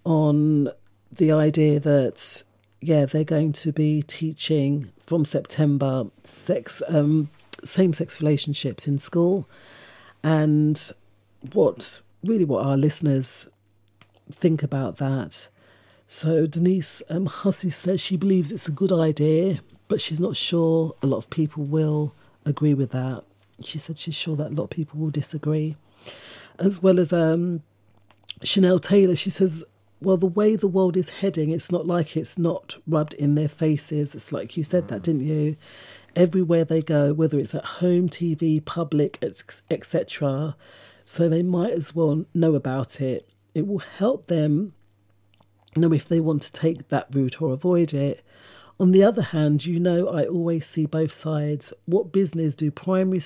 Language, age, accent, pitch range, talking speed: English, 40-59, British, 145-170 Hz, 155 wpm